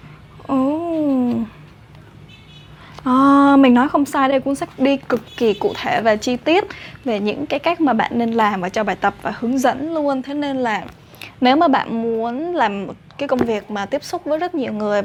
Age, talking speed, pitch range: 10-29, 205 wpm, 225-275 Hz